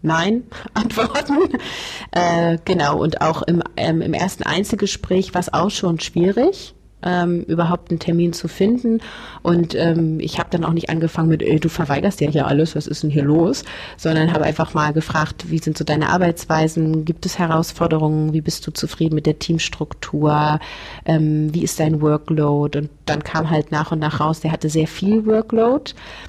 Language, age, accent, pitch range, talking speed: German, 30-49, German, 155-175 Hz, 180 wpm